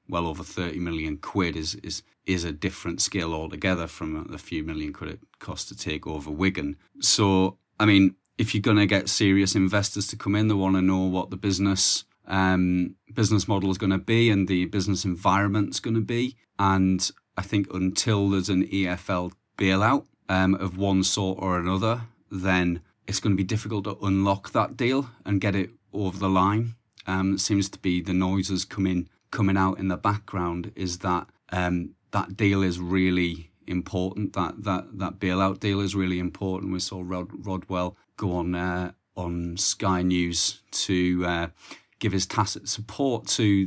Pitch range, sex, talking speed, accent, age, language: 90-100 Hz, male, 185 wpm, British, 30-49, English